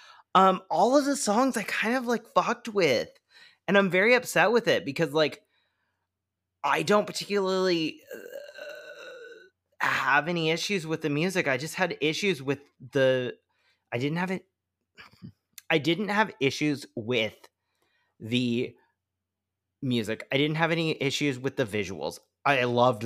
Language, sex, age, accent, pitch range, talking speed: English, male, 30-49, American, 130-195 Hz, 145 wpm